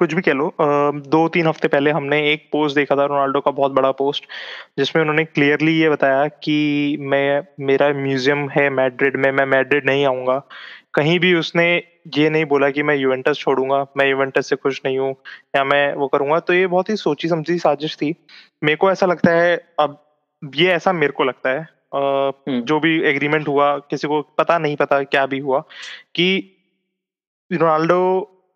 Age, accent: 20-39, native